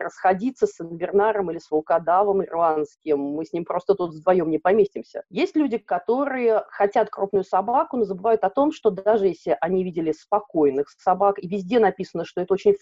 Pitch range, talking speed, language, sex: 170-230 Hz, 180 wpm, Russian, female